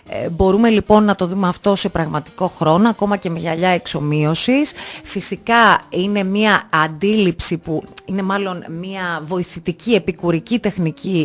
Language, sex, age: Greek, female, 30-49